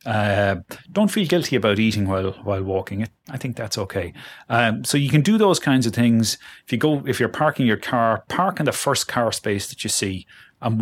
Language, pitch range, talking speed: English, 100-125 Hz, 220 wpm